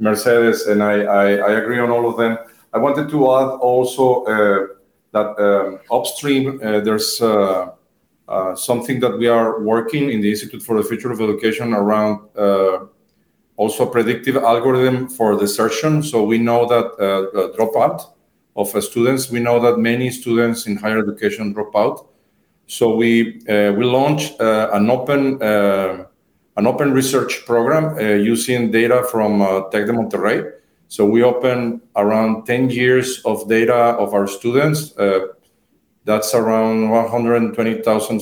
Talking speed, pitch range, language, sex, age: 155 wpm, 105-120 Hz, English, male, 40-59